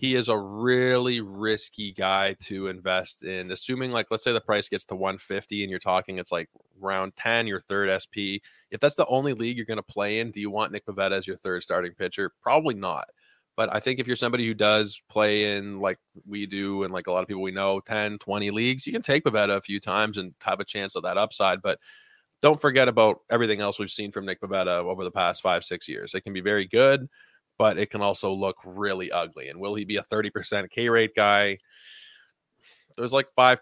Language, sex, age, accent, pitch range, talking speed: English, male, 20-39, American, 100-115 Hz, 230 wpm